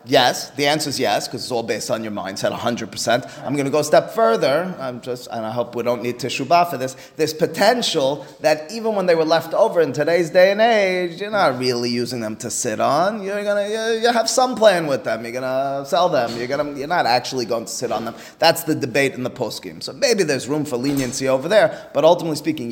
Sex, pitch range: male, 130-180 Hz